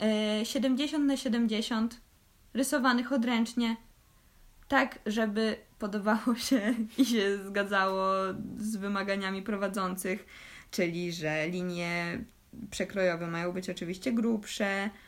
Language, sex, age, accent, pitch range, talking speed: Polish, female, 20-39, native, 185-225 Hz, 90 wpm